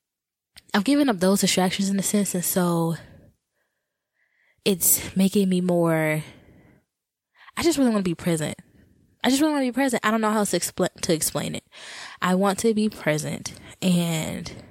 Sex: female